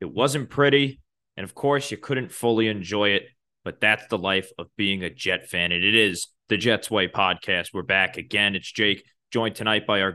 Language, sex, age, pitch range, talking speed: English, male, 20-39, 95-115 Hz, 205 wpm